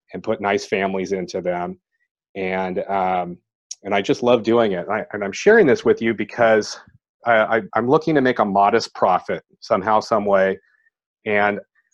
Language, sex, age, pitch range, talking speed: English, male, 30-49, 100-120 Hz, 175 wpm